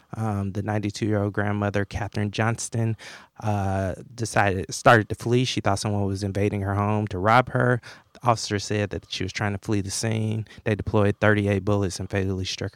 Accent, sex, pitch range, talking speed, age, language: American, male, 100-110 Hz, 180 wpm, 20-39, English